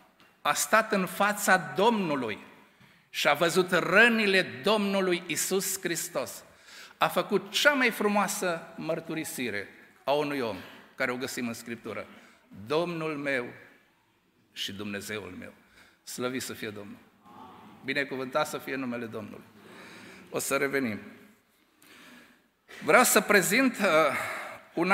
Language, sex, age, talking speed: Romanian, male, 50-69, 115 wpm